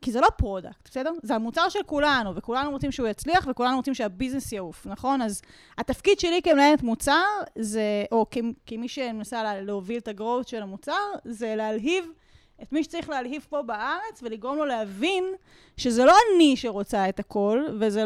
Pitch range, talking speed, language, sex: 220-295 Hz, 170 wpm, Hebrew, female